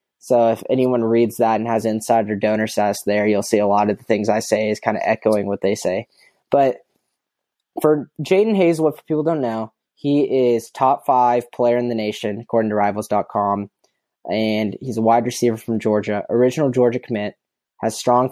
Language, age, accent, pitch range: English, 10-29, American, 110-135 Hz